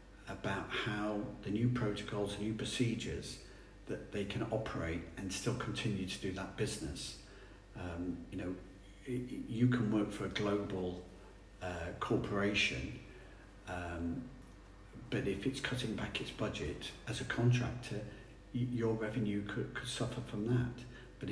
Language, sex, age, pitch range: English, male, 50-69, 95-115 Hz